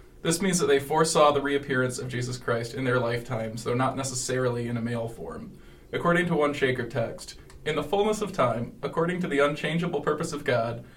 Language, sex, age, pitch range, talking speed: English, male, 20-39, 120-150 Hz, 200 wpm